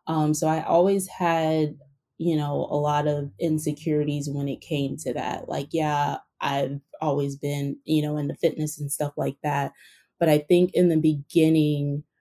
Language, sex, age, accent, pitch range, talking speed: English, female, 20-39, American, 150-170 Hz, 175 wpm